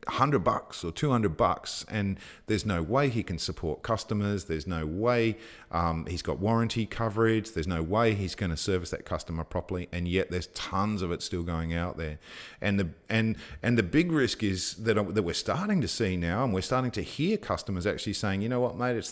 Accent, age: Australian, 40-59